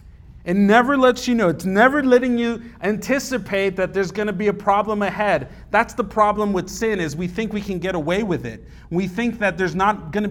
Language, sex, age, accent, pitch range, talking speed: English, male, 40-59, American, 140-210 Hz, 215 wpm